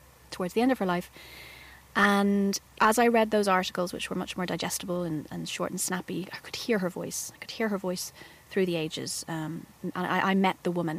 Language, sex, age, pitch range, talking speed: English, female, 30-49, 165-180 Hz, 230 wpm